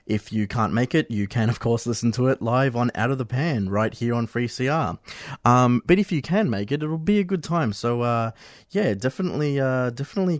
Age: 20-39